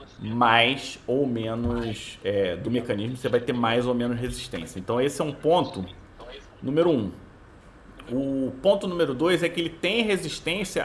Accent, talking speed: Brazilian, 165 wpm